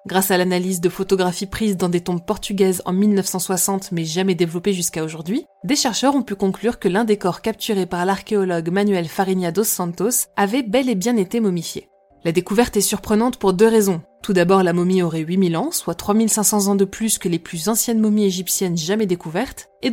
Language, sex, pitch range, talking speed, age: French, female, 185-225 Hz, 200 wpm, 20-39